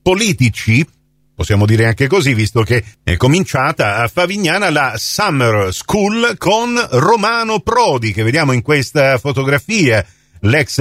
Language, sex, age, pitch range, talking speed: Italian, male, 40-59, 130-190 Hz, 130 wpm